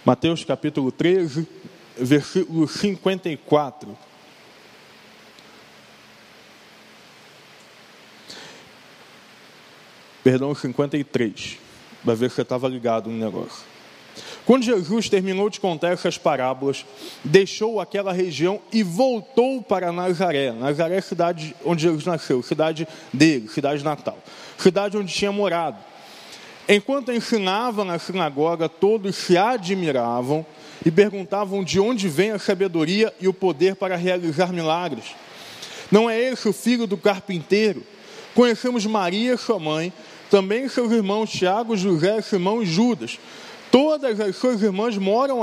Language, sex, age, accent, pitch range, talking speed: Portuguese, male, 20-39, Brazilian, 160-225 Hz, 115 wpm